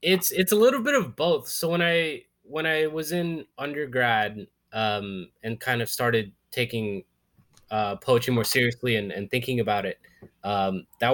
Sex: male